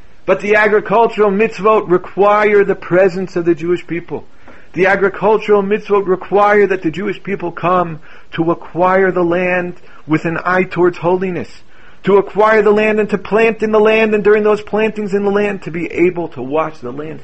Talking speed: 185 wpm